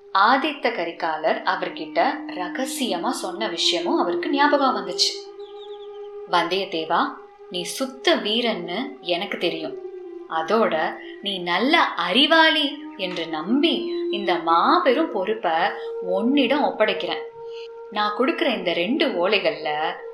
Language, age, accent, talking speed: Tamil, 20-39, native, 90 wpm